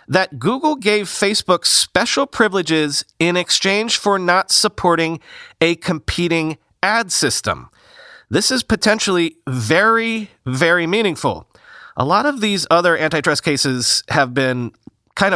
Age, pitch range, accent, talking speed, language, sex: 30-49, 140-195 Hz, American, 120 wpm, English, male